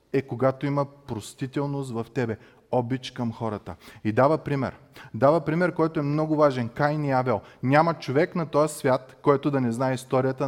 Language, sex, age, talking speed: Bulgarian, male, 30-49, 180 wpm